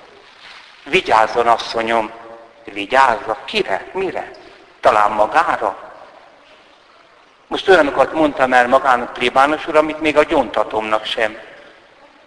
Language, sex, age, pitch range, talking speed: Hungarian, male, 60-79, 115-180 Hz, 95 wpm